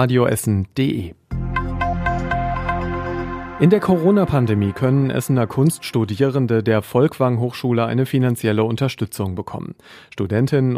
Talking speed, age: 85 wpm, 40-59